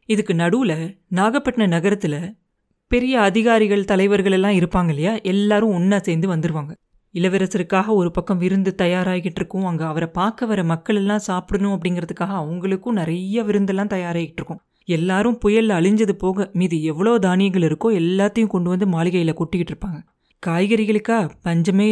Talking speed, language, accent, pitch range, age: 135 wpm, Tamil, native, 175-210 Hz, 30-49